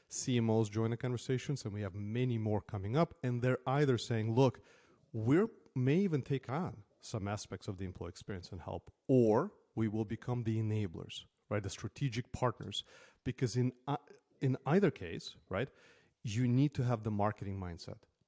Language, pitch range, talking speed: English, 105-130 Hz, 175 wpm